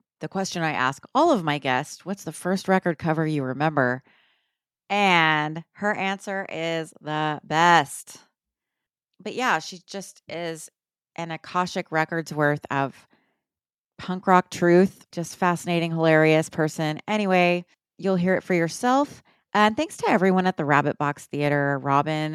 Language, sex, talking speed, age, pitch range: English, female, 145 wpm, 30-49, 150-195 Hz